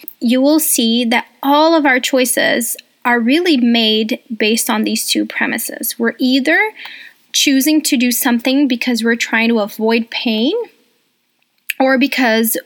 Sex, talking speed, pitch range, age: female, 140 wpm, 225-285 Hz, 20-39